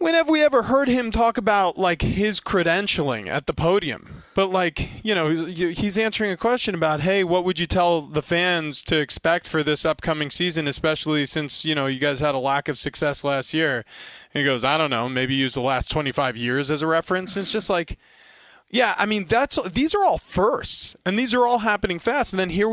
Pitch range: 155-205 Hz